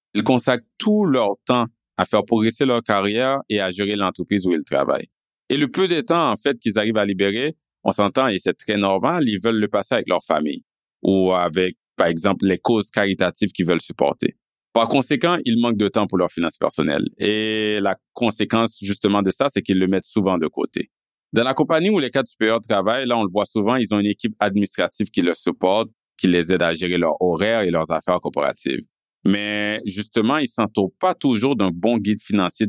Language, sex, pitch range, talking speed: French, male, 100-125 Hz, 215 wpm